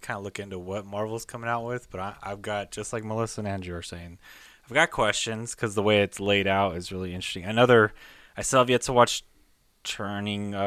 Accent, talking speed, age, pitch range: American, 225 wpm, 20-39, 95-110 Hz